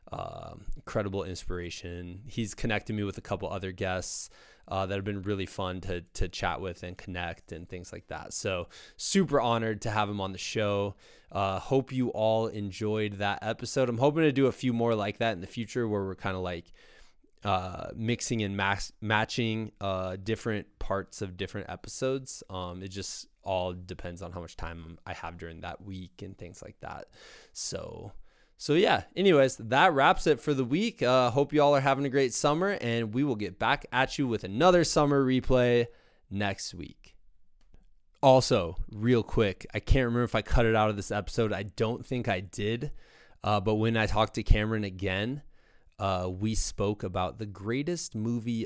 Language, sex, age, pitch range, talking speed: English, male, 20-39, 95-125 Hz, 190 wpm